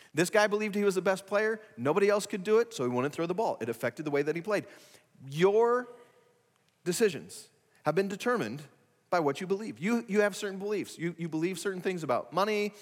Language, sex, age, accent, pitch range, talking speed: English, male, 40-59, American, 145-200 Hz, 220 wpm